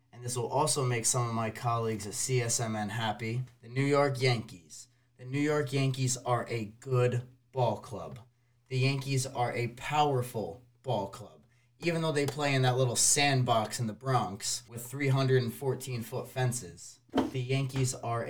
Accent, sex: American, male